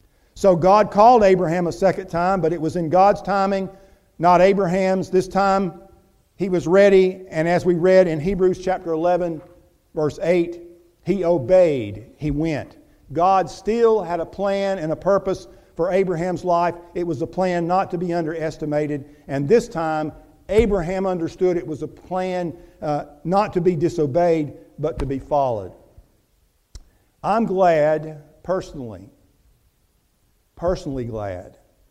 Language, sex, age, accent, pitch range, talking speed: English, male, 50-69, American, 155-190 Hz, 145 wpm